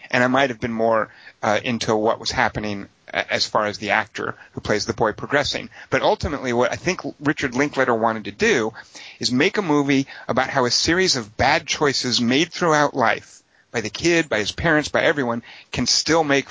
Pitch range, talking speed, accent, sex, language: 115-150 Hz, 205 wpm, American, male, English